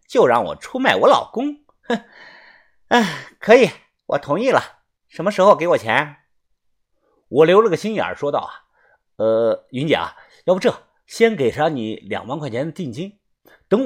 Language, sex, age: Chinese, male, 50-69